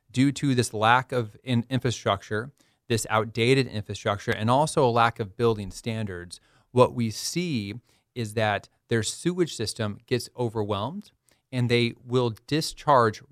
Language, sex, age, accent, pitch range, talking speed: English, male, 30-49, American, 110-130 Hz, 135 wpm